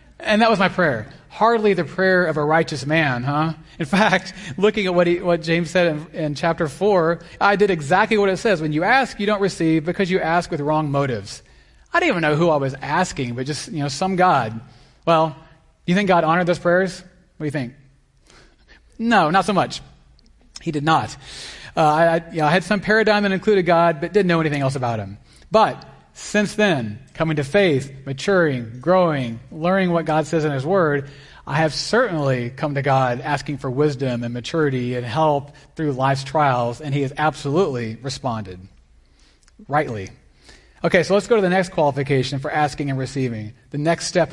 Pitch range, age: 140-180 Hz, 30-49